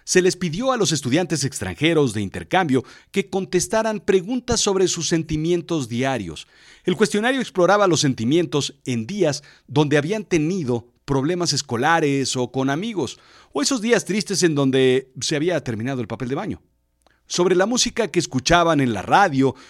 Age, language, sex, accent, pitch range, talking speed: 40-59, Spanish, male, Mexican, 135-190 Hz, 160 wpm